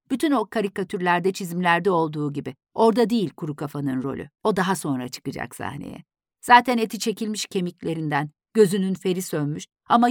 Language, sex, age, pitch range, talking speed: Turkish, female, 50-69, 150-220 Hz, 140 wpm